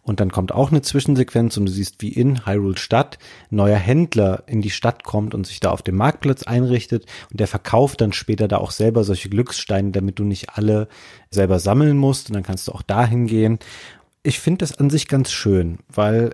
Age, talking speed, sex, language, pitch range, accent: 30-49, 215 wpm, male, German, 100-125 Hz, German